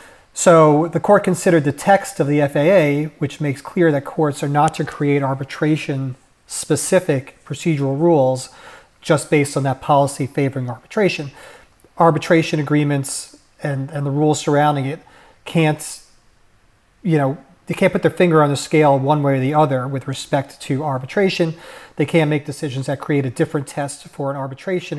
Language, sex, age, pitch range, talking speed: English, male, 40-59, 135-160 Hz, 165 wpm